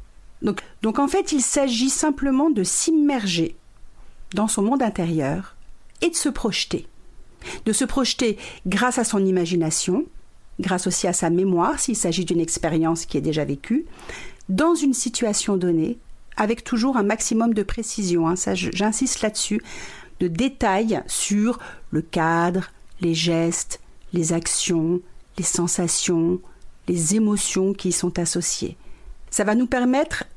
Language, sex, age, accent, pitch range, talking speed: French, female, 50-69, French, 170-235 Hz, 140 wpm